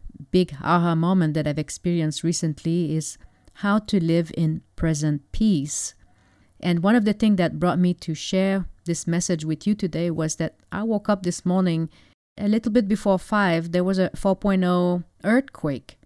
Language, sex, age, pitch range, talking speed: English, female, 40-59, 155-190 Hz, 170 wpm